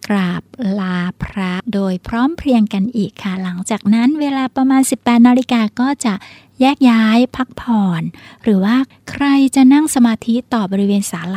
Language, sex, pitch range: Thai, female, 190-240 Hz